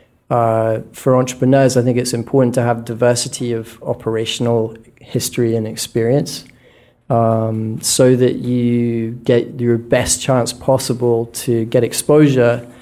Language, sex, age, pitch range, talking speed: English, male, 30-49, 115-125 Hz, 125 wpm